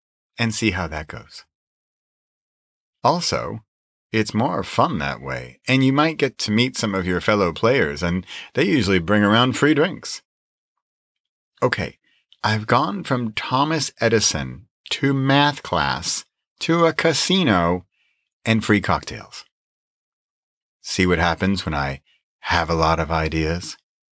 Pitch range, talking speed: 80-120 Hz, 135 wpm